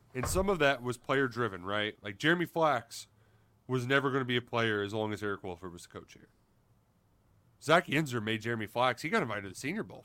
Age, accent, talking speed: 30-49, American, 235 wpm